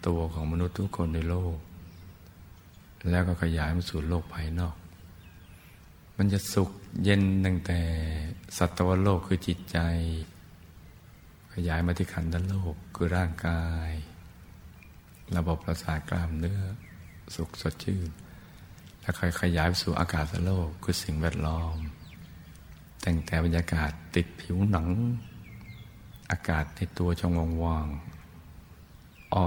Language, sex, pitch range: Thai, male, 80-90 Hz